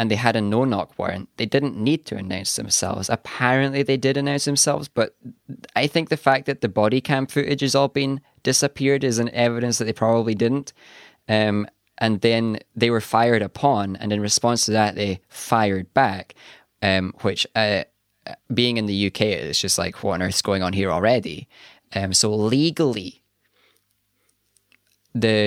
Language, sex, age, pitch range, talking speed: English, male, 10-29, 105-135 Hz, 175 wpm